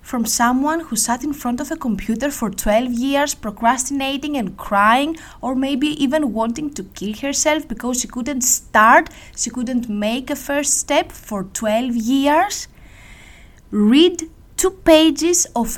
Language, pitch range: Greek, 210-290 Hz